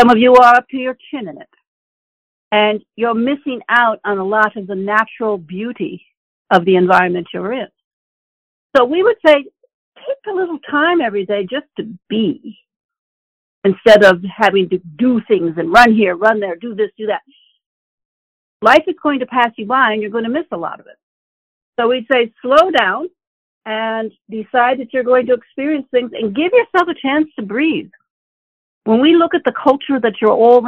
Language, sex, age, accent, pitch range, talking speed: English, female, 60-79, American, 210-285 Hz, 195 wpm